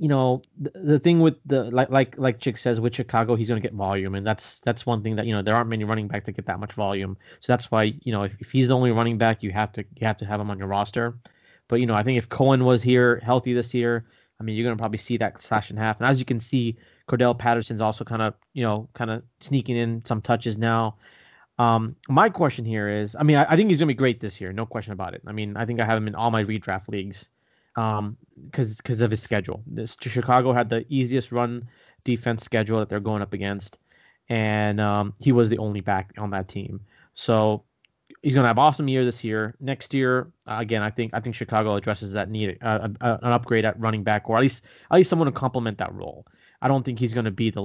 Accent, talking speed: American, 260 wpm